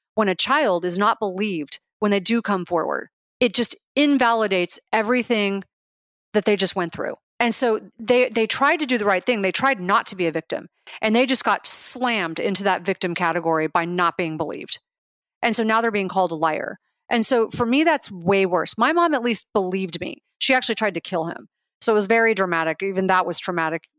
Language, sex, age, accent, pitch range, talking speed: English, female, 30-49, American, 180-230 Hz, 215 wpm